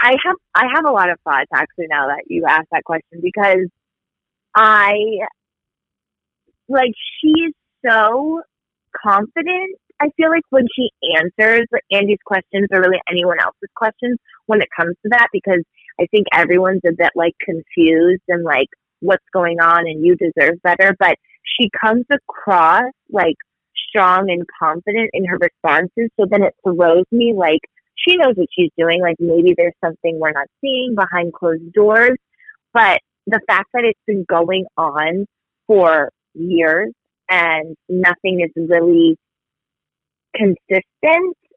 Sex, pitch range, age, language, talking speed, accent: female, 170-245 Hz, 30-49, English, 150 wpm, American